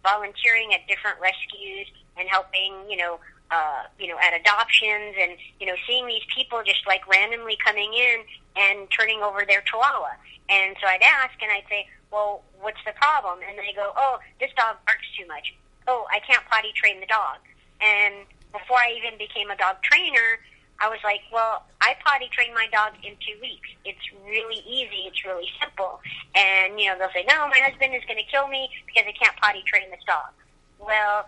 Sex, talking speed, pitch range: male, 200 wpm, 195-230 Hz